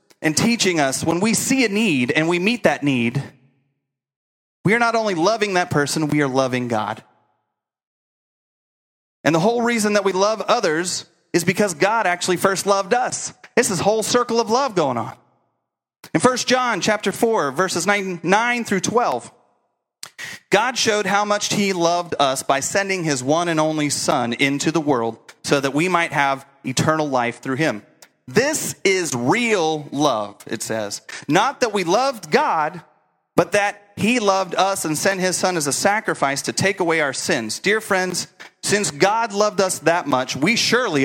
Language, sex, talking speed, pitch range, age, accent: English, male, 175 wpm, 140-205 Hz, 30-49, American